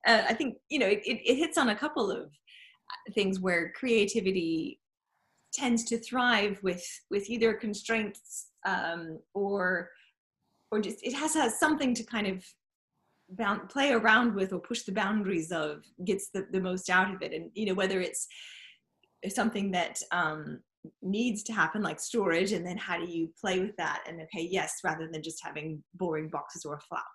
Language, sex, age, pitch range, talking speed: English, female, 20-39, 175-225 Hz, 180 wpm